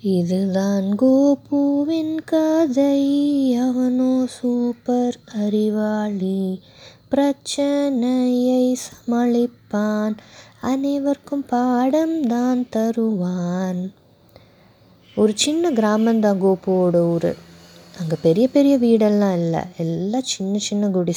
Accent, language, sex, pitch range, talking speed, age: Indian, English, female, 185-240 Hz, 60 wpm, 20-39